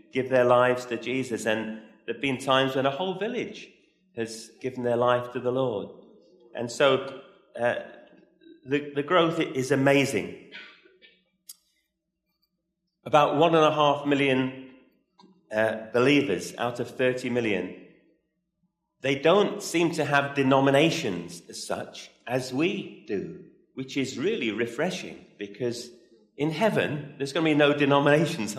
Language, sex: English, male